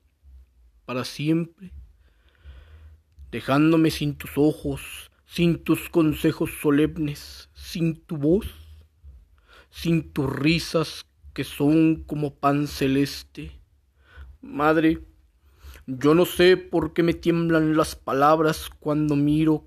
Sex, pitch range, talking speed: male, 110-150 Hz, 100 wpm